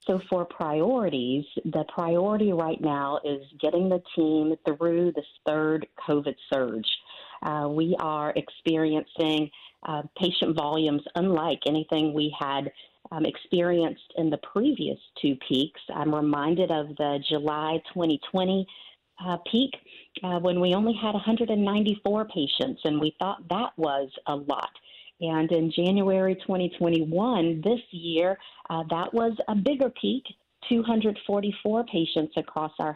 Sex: female